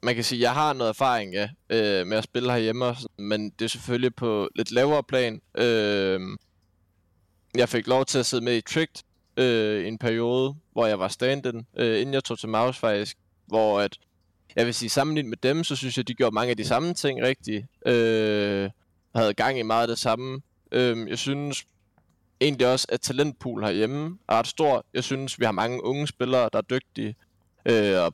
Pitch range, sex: 105-130 Hz, male